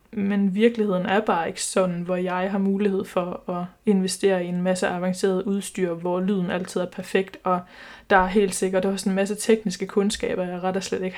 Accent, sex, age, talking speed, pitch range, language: native, female, 20-39, 215 wpm, 190-215 Hz, Danish